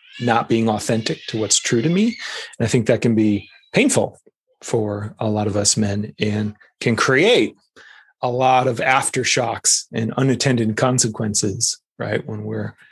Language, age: English, 30-49